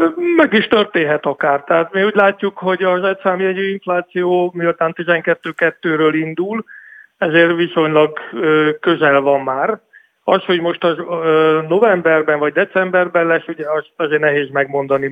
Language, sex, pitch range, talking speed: Hungarian, male, 150-185 Hz, 125 wpm